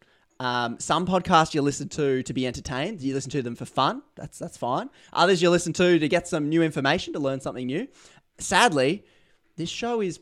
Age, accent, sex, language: 20-39, Australian, male, English